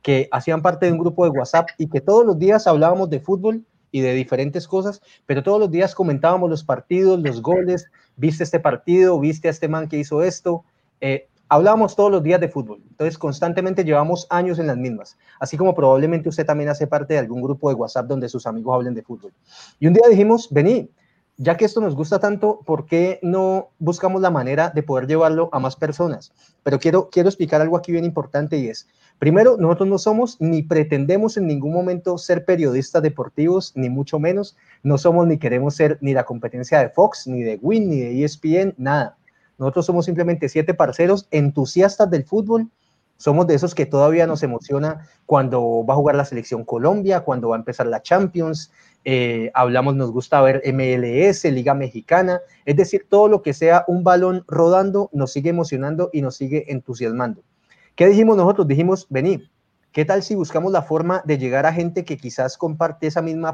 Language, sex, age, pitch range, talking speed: Spanish, male, 30-49, 140-180 Hz, 195 wpm